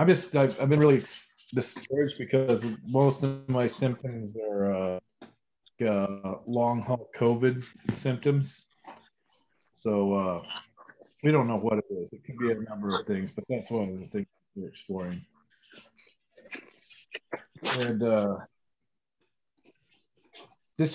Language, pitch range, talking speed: English, 105-140 Hz, 125 wpm